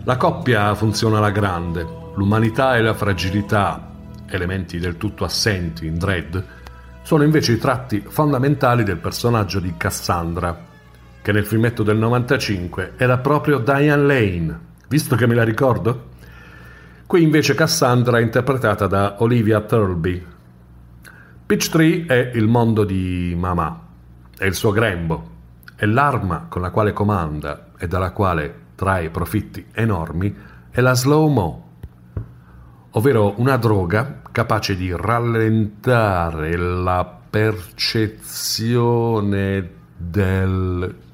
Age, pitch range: 40-59, 85-115 Hz